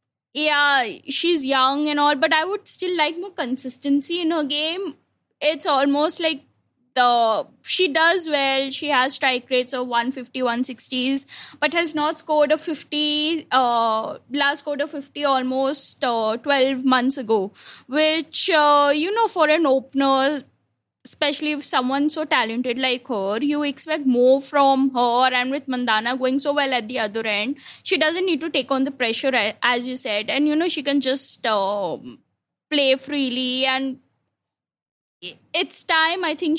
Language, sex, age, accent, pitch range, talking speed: English, female, 10-29, Indian, 245-300 Hz, 160 wpm